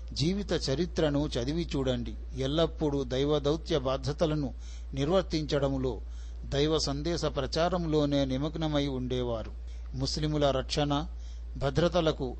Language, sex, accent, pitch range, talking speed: Telugu, male, native, 125-155 Hz, 75 wpm